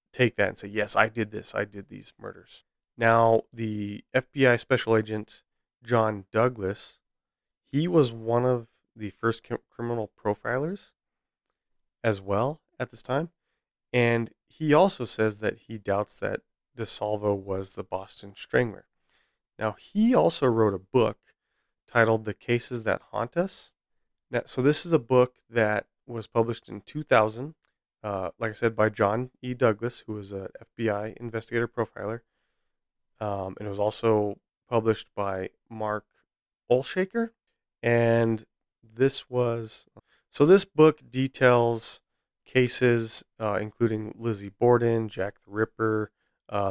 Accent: American